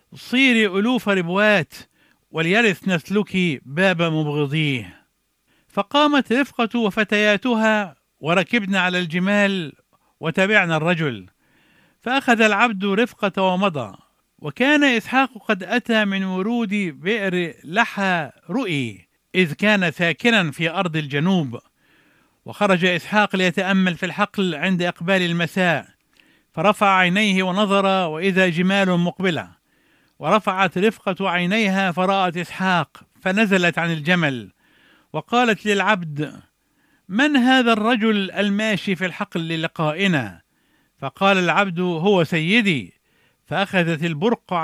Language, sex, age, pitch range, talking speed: English, male, 50-69, 165-210 Hz, 95 wpm